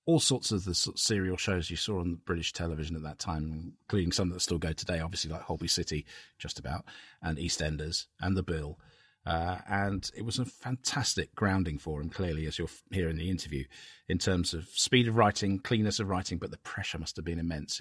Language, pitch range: English, 85-105 Hz